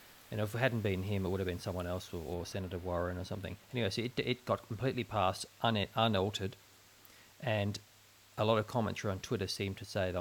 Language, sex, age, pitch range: English, male, 30-49, 95-110 Hz